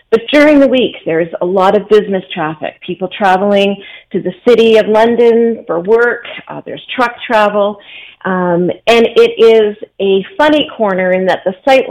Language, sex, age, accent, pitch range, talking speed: English, female, 40-59, American, 175-225 Hz, 170 wpm